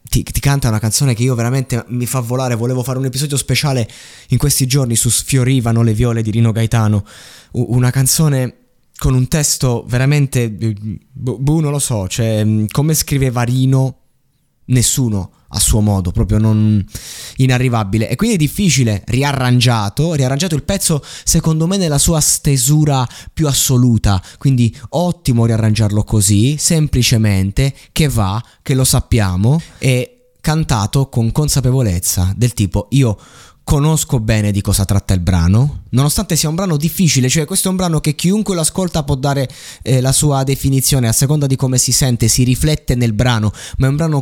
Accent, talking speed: native, 160 wpm